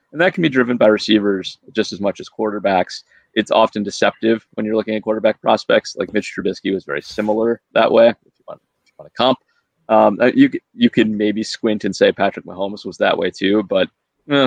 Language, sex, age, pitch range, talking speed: English, male, 30-49, 100-145 Hz, 205 wpm